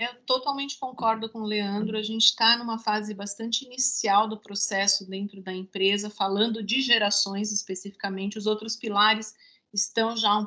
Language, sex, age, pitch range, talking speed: Portuguese, female, 40-59, 220-260 Hz, 160 wpm